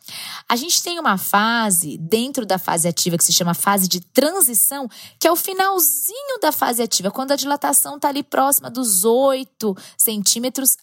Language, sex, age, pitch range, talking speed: Portuguese, female, 20-39, 185-270 Hz, 170 wpm